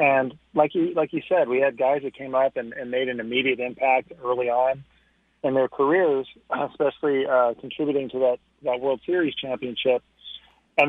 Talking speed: 180 wpm